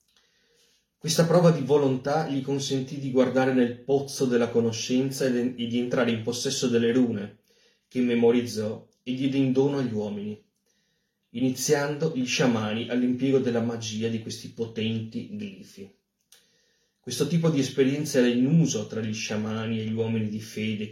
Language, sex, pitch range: Italian, male, 115-135 Hz